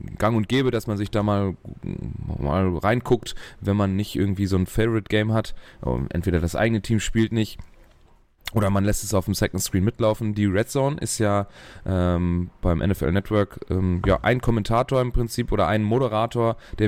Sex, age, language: male, 30-49, German